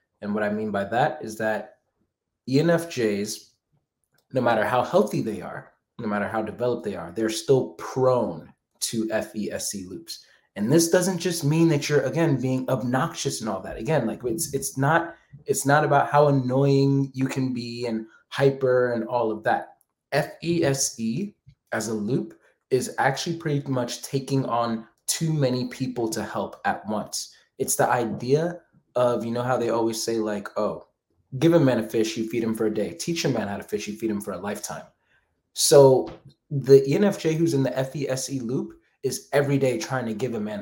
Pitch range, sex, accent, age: 115-140 Hz, male, American, 20-39